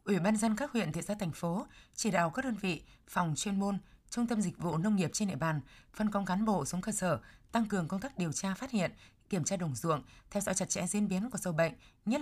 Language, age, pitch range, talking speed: Vietnamese, 20-39, 160-210 Hz, 270 wpm